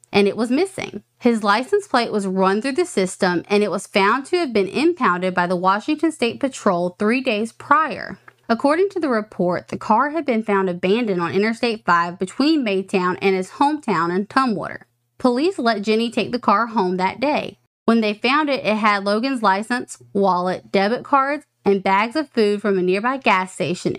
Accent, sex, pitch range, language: American, female, 190-250 Hz, English